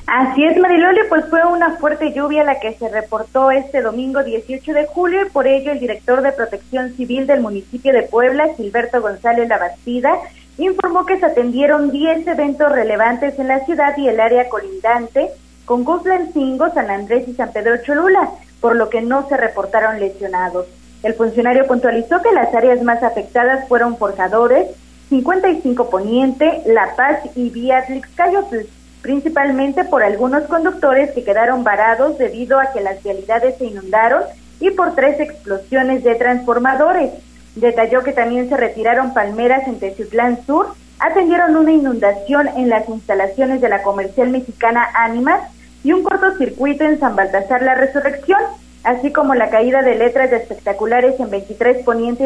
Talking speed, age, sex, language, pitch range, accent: 155 wpm, 30-49, female, Spanish, 230-290 Hz, Mexican